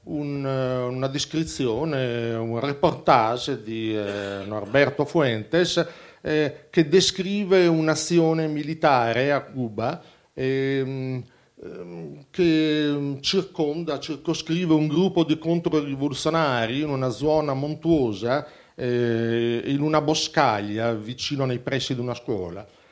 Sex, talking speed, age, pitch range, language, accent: male, 95 wpm, 50-69, 120-155 Hz, Italian, native